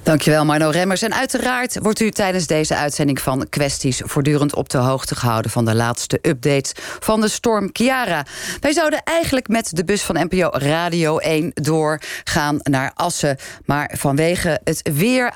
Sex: female